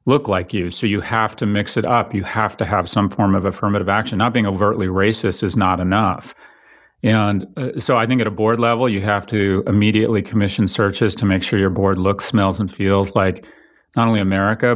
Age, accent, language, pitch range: 40-59, American, English, 100-115 Hz